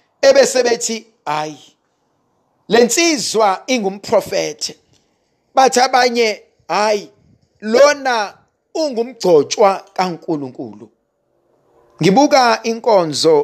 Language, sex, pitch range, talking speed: English, male, 165-250 Hz, 65 wpm